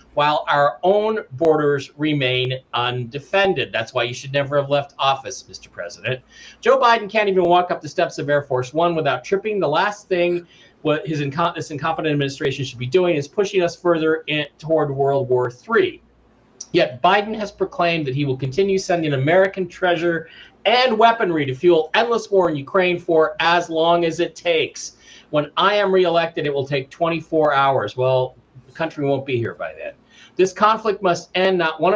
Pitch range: 135-180 Hz